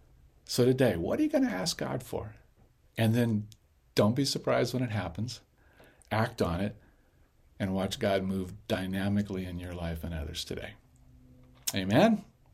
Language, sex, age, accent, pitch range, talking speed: English, male, 50-69, American, 90-115 Hz, 160 wpm